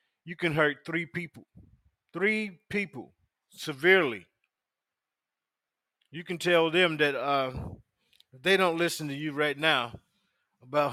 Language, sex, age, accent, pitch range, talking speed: English, male, 40-59, American, 125-160 Hz, 125 wpm